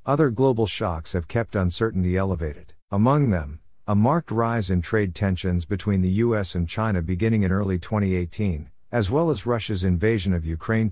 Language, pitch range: English, 90-115 Hz